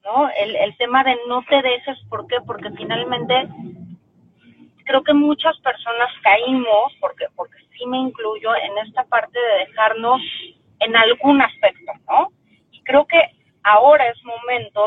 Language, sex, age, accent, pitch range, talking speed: Spanish, female, 30-49, Mexican, 210-270 Hz, 150 wpm